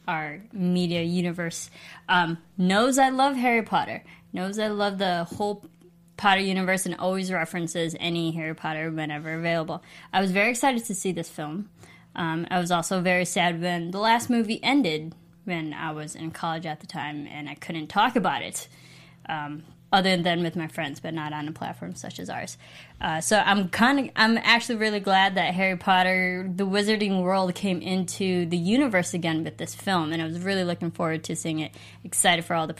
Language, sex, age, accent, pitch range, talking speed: English, female, 20-39, American, 170-210 Hz, 195 wpm